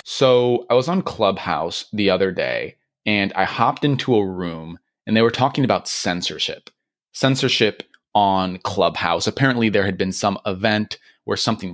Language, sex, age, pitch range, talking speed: English, male, 30-49, 95-130 Hz, 160 wpm